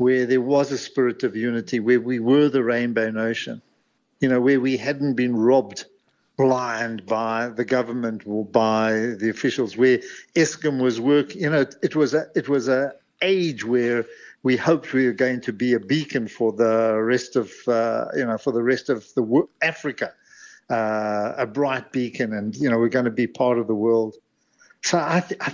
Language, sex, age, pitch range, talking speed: English, male, 60-79, 120-160 Hz, 195 wpm